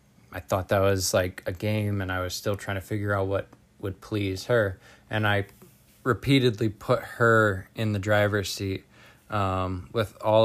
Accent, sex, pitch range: American, male, 95-110 Hz